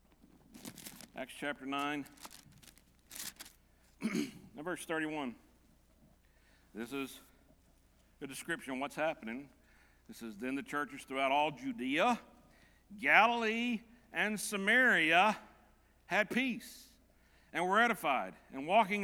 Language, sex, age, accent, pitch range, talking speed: English, male, 60-79, American, 140-220 Hz, 100 wpm